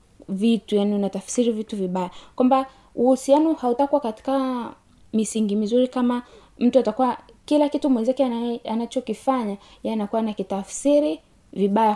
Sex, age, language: female, 20-39, Swahili